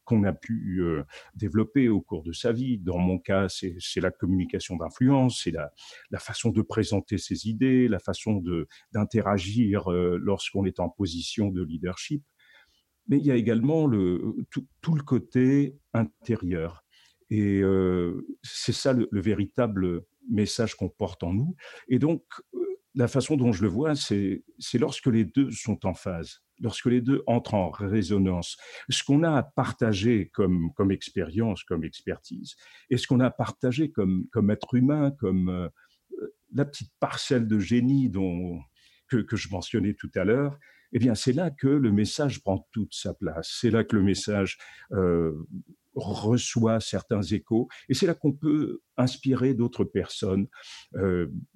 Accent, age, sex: French, 50-69, male